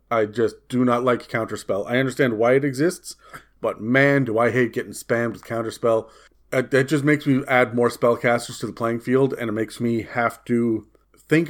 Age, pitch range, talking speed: 40-59, 110-130 Hz, 200 wpm